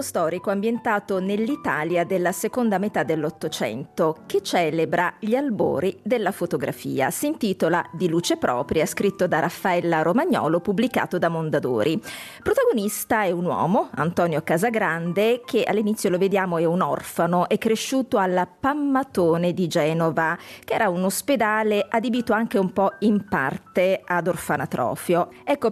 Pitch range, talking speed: 175-225 Hz, 135 wpm